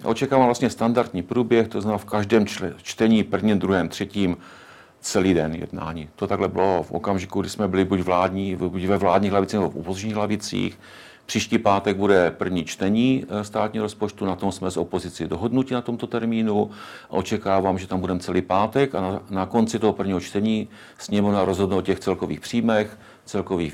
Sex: male